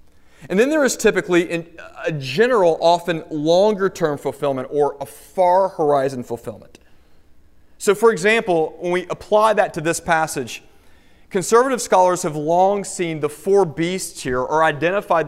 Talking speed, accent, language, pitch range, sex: 140 wpm, American, English, 135-190 Hz, male